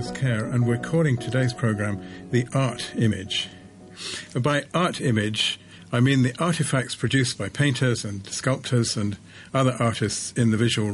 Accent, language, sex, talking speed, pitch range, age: British, English, male, 150 wpm, 105-135 Hz, 50-69